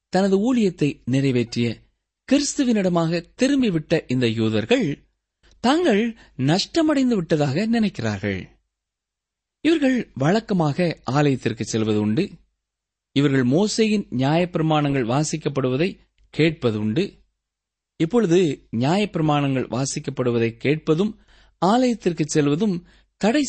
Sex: male